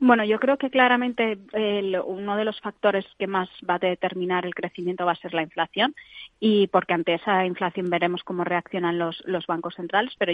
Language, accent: Spanish, Spanish